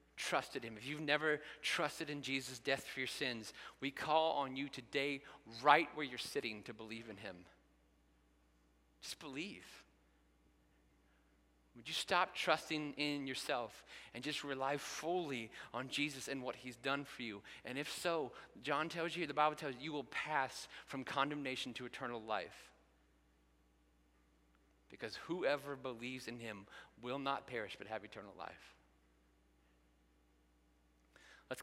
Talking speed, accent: 145 wpm, American